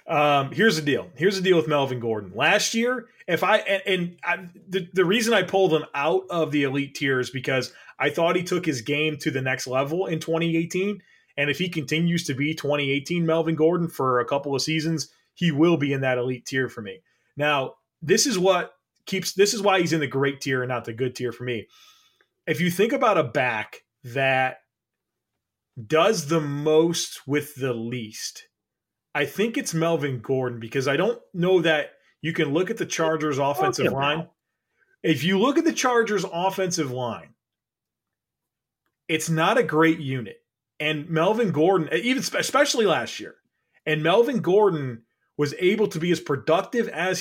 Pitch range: 140-185 Hz